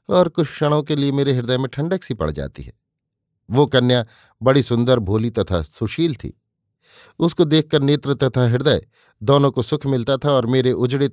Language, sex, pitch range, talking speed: Hindi, male, 115-145 Hz, 185 wpm